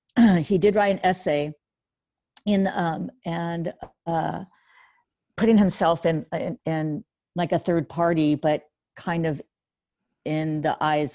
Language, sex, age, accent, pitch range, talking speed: English, female, 50-69, American, 150-175 Hz, 130 wpm